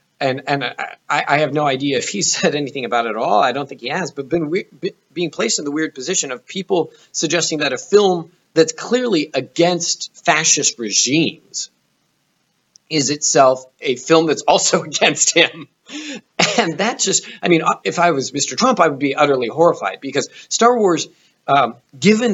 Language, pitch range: English, 130-175 Hz